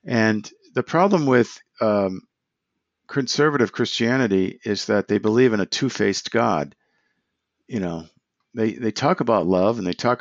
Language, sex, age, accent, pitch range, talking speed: English, male, 50-69, American, 100-120 Hz, 145 wpm